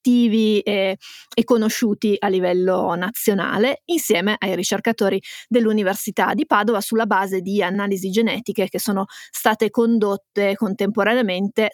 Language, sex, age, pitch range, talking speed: Italian, female, 30-49, 205-235 Hz, 110 wpm